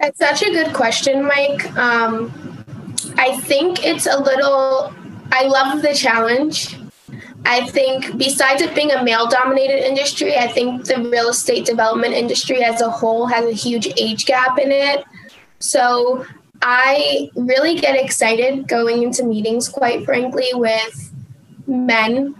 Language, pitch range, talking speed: English, 230-275 Hz, 140 wpm